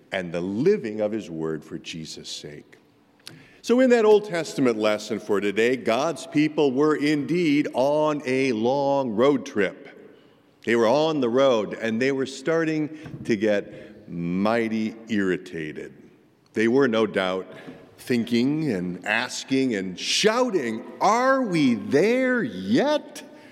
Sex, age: male, 50-69